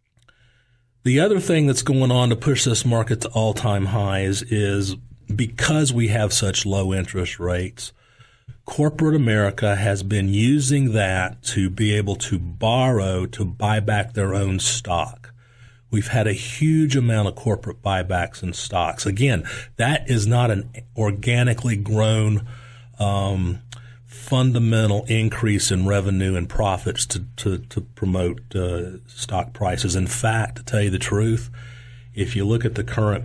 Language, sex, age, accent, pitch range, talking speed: English, male, 40-59, American, 105-120 Hz, 150 wpm